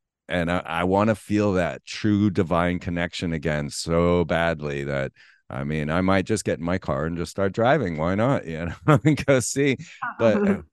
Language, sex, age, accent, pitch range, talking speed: English, male, 30-49, American, 85-105 Hz, 190 wpm